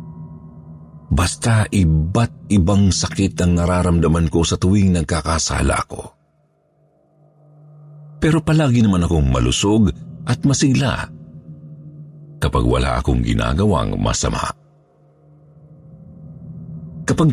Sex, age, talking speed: male, 50-69, 80 wpm